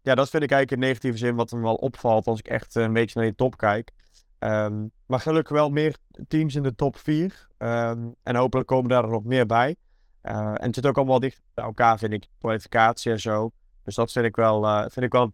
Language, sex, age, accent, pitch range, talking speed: Dutch, male, 20-39, Dutch, 115-135 Hz, 250 wpm